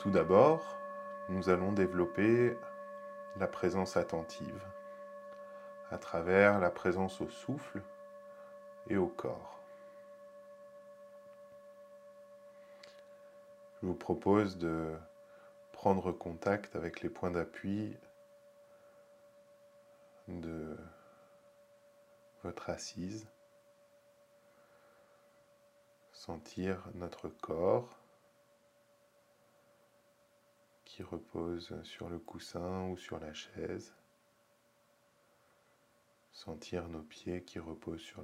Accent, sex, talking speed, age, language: French, male, 75 wpm, 20-39, French